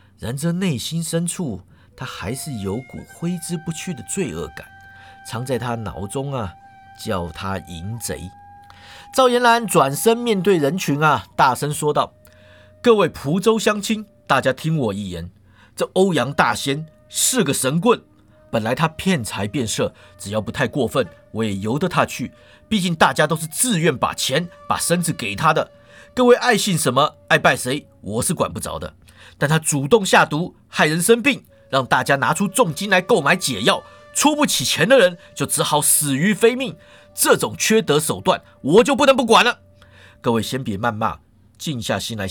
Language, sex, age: Chinese, male, 50-69